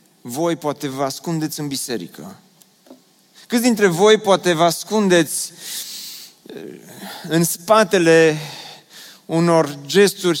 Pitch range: 165-200 Hz